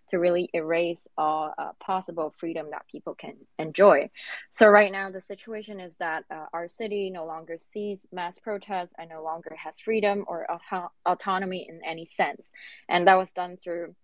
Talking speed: 175 wpm